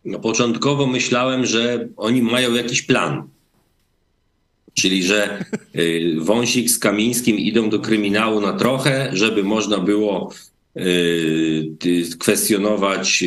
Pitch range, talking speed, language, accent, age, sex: 105-130 Hz, 95 wpm, Polish, native, 40-59, male